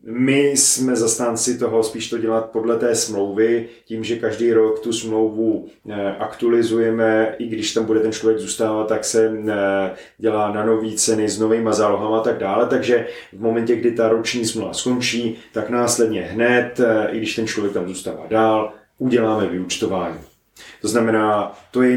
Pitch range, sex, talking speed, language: 105-115 Hz, male, 165 wpm, Czech